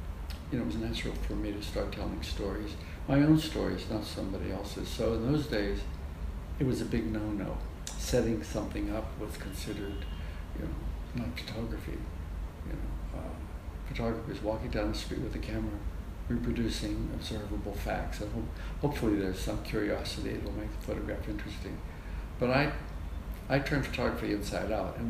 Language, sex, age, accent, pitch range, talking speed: English, male, 60-79, American, 80-110 Hz, 160 wpm